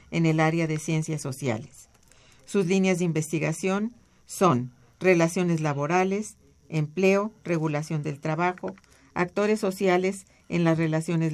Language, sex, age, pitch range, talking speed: Spanish, female, 50-69, 155-185 Hz, 115 wpm